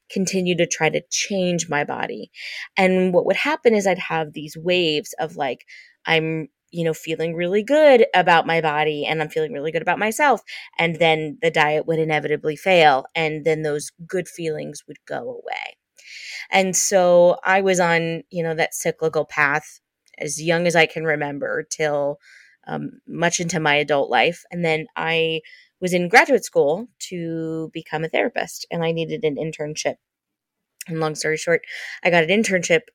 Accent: American